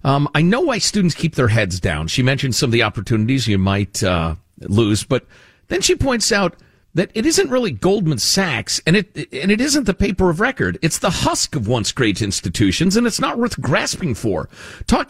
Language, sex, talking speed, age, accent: English, male, 205 wpm, 50-69, American